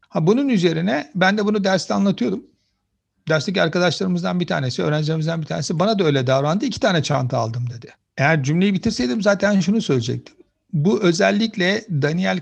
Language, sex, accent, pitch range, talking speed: Turkish, male, native, 145-195 Hz, 155 wpm